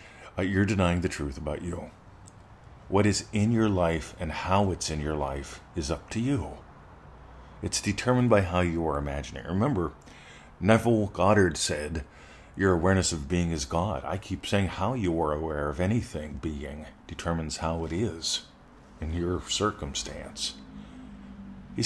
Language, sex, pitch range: English, male, 80-110 Hz